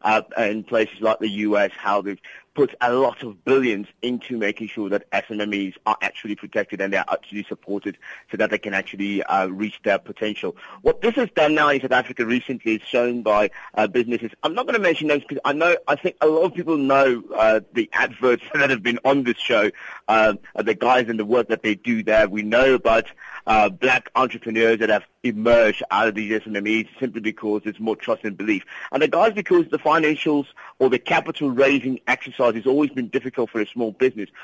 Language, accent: English, British